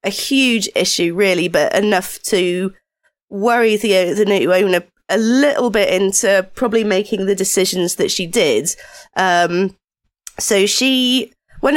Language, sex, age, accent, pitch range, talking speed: English, female, 20-39, British, 185-225 Hz, 145 wpm